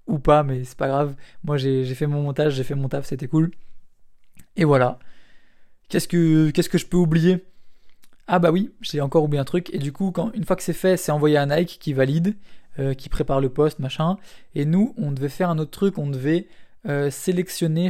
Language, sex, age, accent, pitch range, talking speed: French, male, 20-39, French, 140-180 Hz, 230 wpm